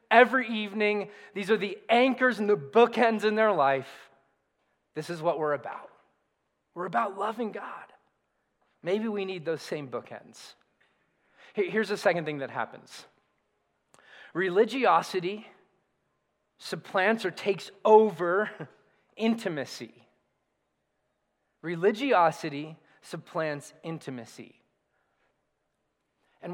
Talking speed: 100 wpm